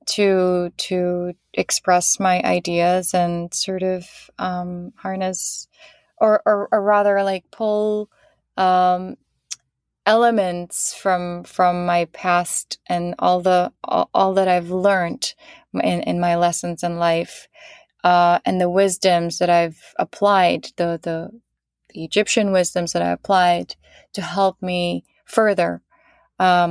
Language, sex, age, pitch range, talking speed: English, female, 20-39, 170-195 Hz, 125 wpm